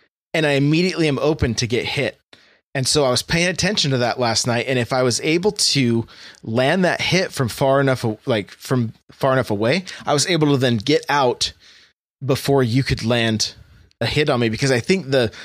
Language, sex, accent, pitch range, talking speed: English, male, American, 120-150 Hz, 210 wpm